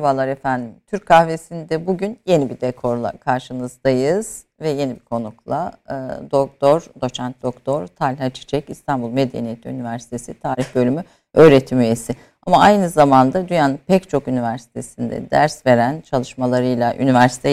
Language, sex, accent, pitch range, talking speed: Turkish, female, native, 125-165 Hz, 125 wpm